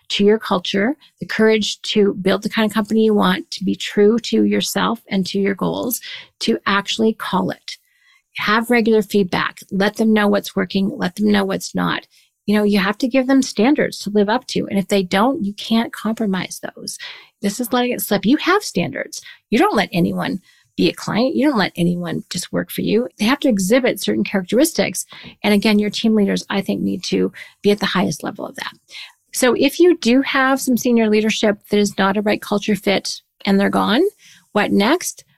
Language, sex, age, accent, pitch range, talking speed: English, female, 40-59, American, 200-245 Hz, 210 wpm